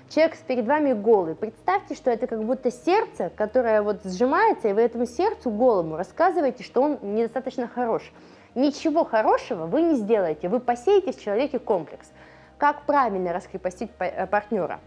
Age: 20-39